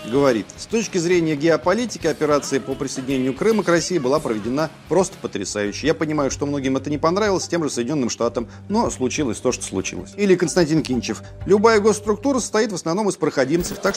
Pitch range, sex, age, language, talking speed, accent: 130-185 Hz, male, 40-59, Russian, 180 wpm, native